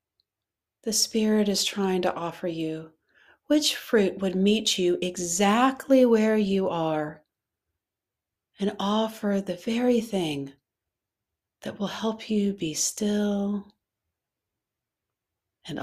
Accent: American